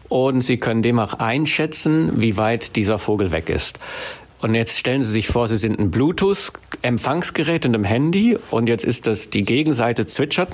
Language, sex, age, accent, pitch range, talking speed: German, male, 60-79, German, 105-140 Hz, 180 wpm